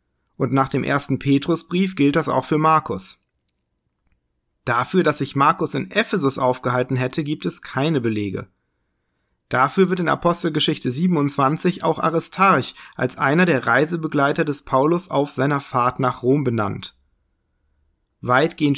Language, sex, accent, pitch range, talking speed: German, male, German, 125-160 Hz, 135 wpm